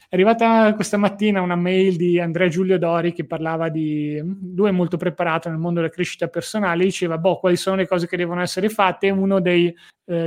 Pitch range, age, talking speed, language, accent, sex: 170-200 Hz, 20-39, 205 wpm, Italian, native, male